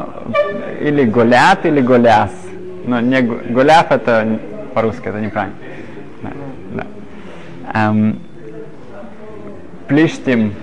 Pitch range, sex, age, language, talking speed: 115-155 Hz, male, 20-39, Russian, 70 wpm